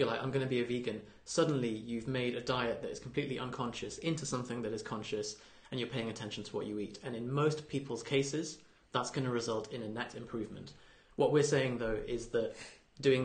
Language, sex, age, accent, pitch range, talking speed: English, male, 30-49, British, 105-130 Hz, 220 wpm